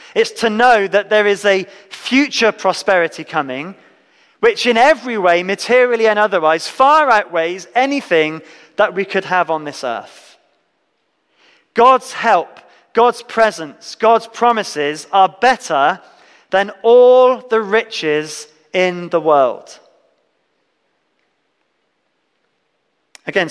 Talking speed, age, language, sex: 110 wpm, 30-49, English, male